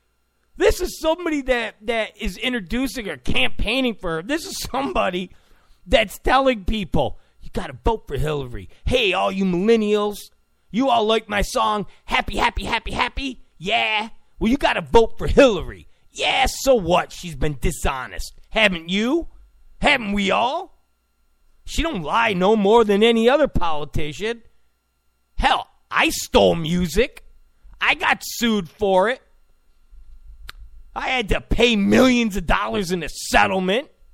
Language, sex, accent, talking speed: English, male, American, 145 wpm